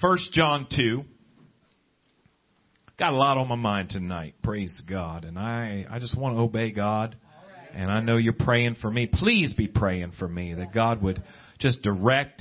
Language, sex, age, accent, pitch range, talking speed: English, male, 40-59, American, 135-200 Hz, 180 wpm